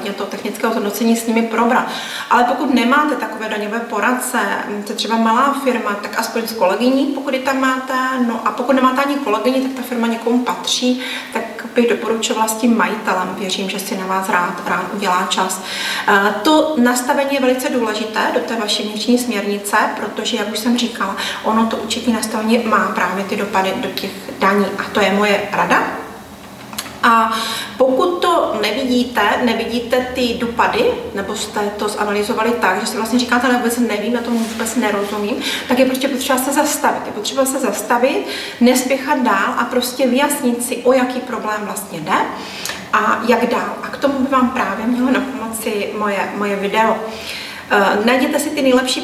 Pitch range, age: 210-255 Hz, 30-49